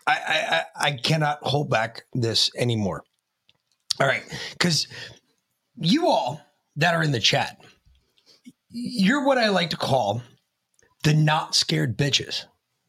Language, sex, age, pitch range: English, male, 30-49, 145-235 Hz